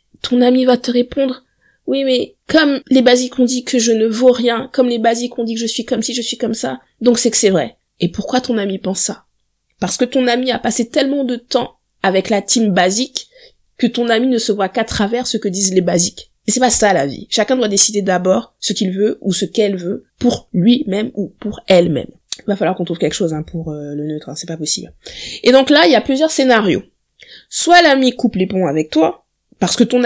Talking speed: 250 wpm